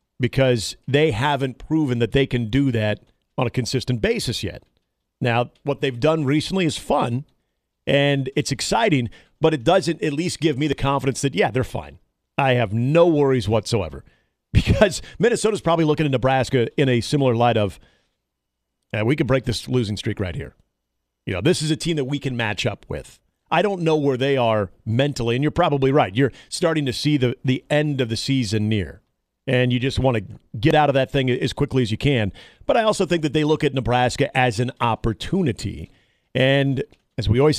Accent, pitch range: American, 120-150 Hz